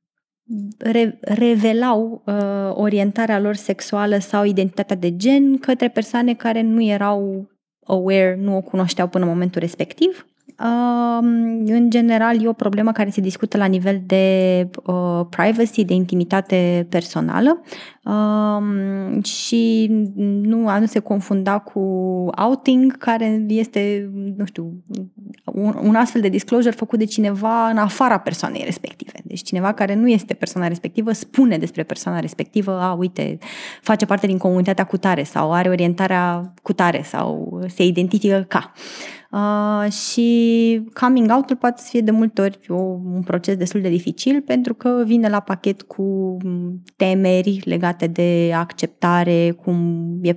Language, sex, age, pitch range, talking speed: Romanian, female, 20-39, 180-225 Hz, 140 wpm